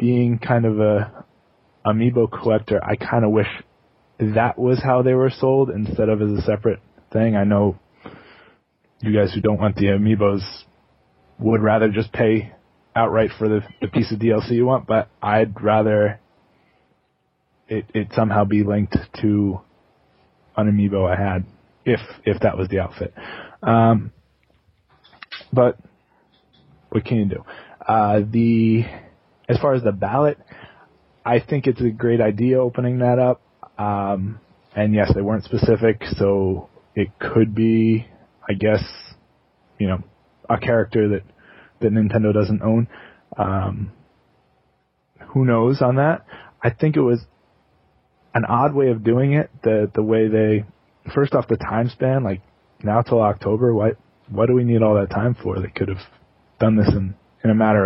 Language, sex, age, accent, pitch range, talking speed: English, male, 20-39, American, 100-115 Hz, 160 wpm